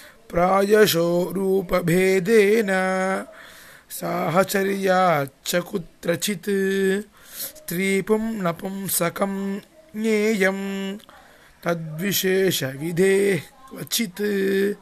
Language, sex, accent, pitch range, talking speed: English, male, Indian, 185-205 Hz, 55 wpm